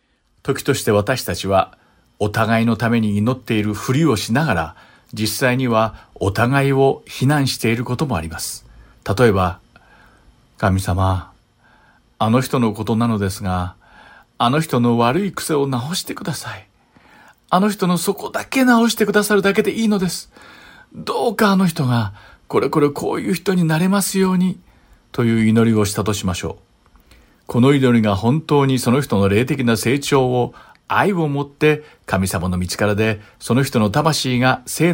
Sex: male